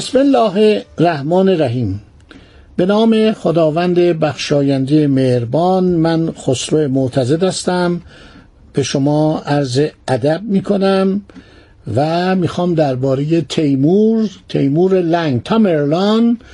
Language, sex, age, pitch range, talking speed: Persian, male, 60-79, 145-195 Hz, 100 wpm